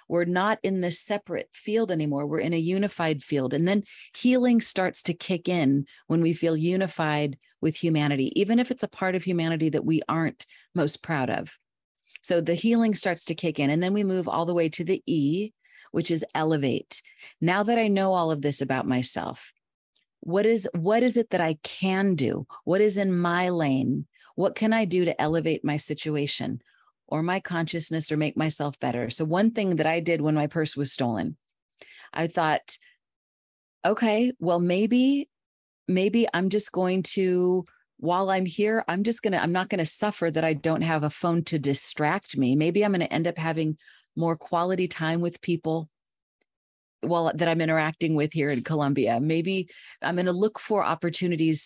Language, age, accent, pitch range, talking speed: English, 40-59, American, 155-190 Hz, 190 wpm